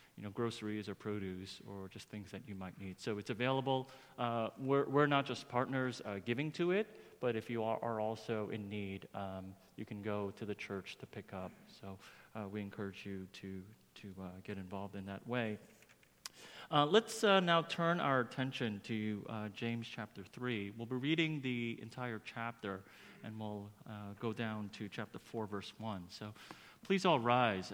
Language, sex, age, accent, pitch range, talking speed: English, male, 30-49, American, 105-145 Hz, 190 wpm